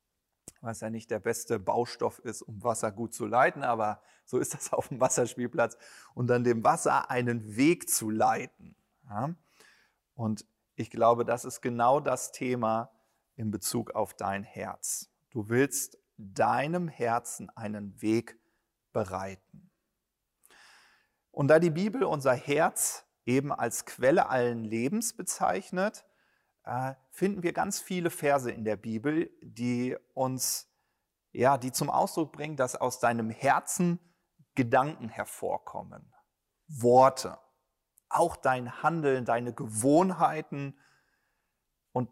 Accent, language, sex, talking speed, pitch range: German, German, male, 125 wpm, 115-155 Hz